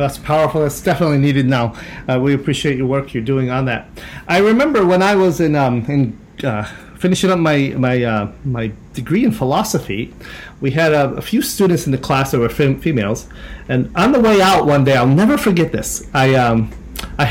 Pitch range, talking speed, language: 125-170 Hz, 205 wpm, English